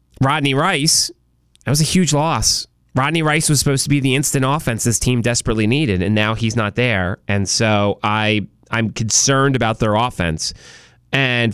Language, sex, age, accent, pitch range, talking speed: English, male, 30-49, American, 110-145 Hz, 180 wpm